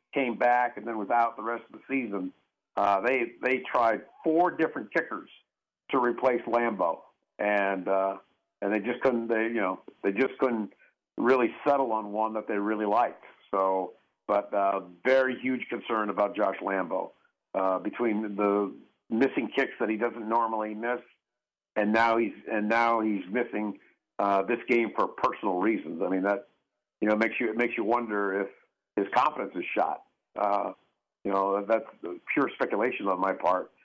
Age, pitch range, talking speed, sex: 50-69, 100-120 Hz, 170 wpm, male